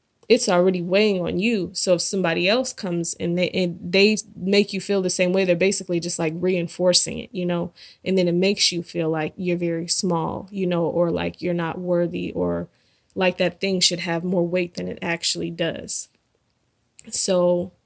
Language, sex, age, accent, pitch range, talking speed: English, female, 20-39, American, 175-200 Hz, 195 wpm